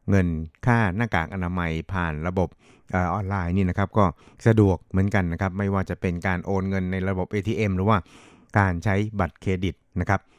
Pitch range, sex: 90-105 Hz, male